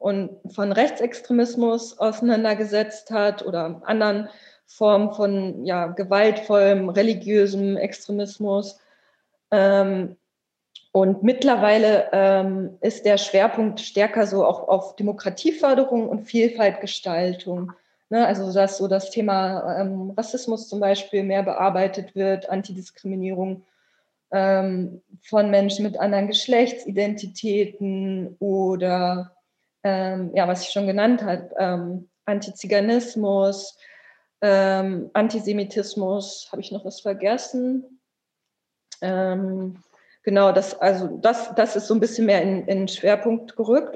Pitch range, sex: 190-215 Hz, female